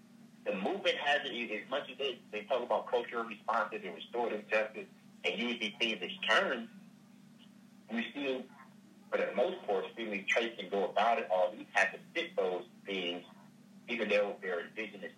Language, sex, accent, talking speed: English, male, American, 180 wpm